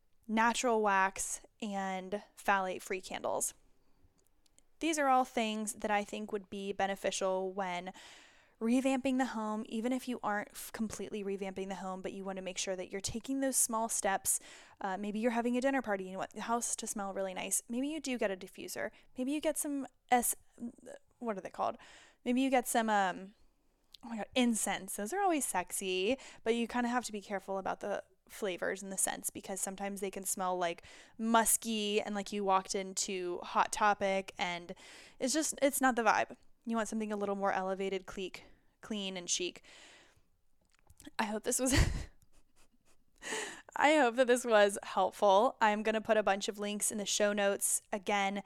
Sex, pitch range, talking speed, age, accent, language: female, 195-245 Hz, 190 wpm, 10-29, American, English